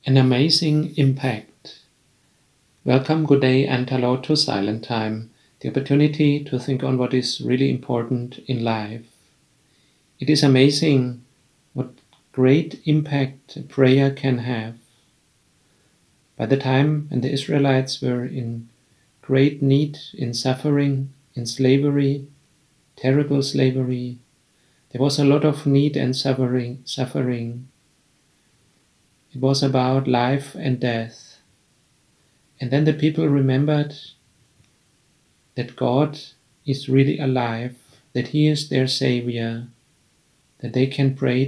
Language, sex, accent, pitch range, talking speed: English, male, German, 125-140 Hz, 115 wpm